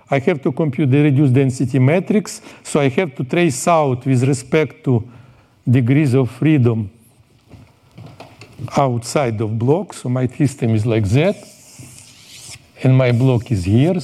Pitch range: 120-145 Hz